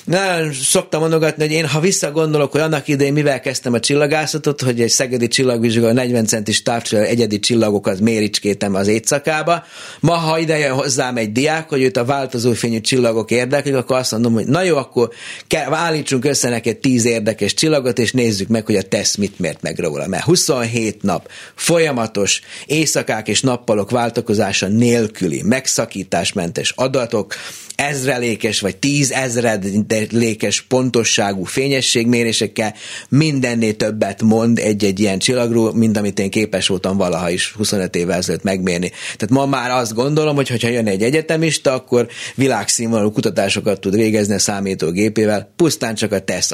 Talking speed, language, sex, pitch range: 150 wpm, Hungarian, male, 110-145 Hz